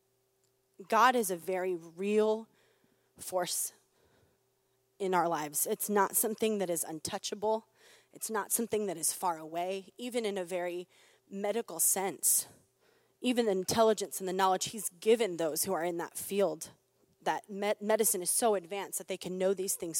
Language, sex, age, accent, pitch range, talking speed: English, female, 20-39, American, 170-210 Hz, 160 wpm